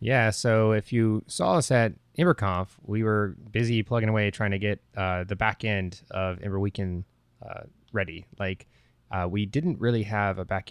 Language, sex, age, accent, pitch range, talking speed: English, male, 20-39, American, 95-110 Hz, 185 wpm